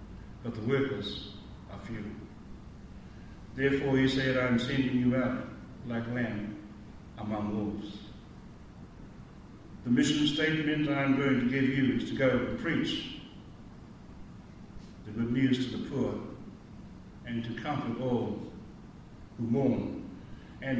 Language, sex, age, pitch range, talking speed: English, male, 60-79, 105-135 Hz, 125 wpm